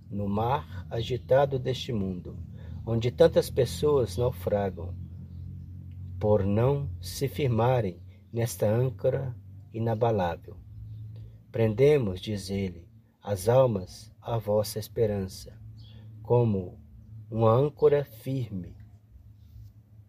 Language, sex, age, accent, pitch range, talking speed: Portuguese, male, 50-69, Brazilian, 100-125 Hz, 85 wpm